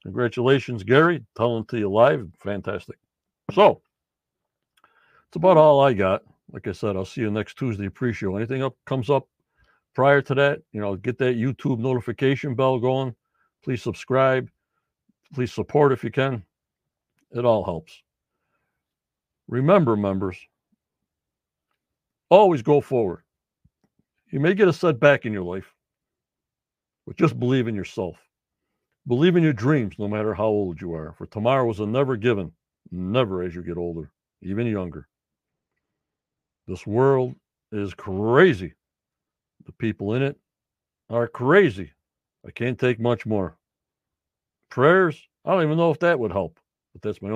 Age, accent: 60-79, American